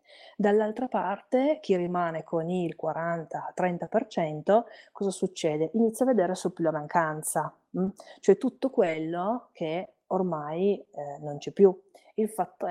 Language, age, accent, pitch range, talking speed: Italian, 30-49, native, 160-205 Hz, 130 wpm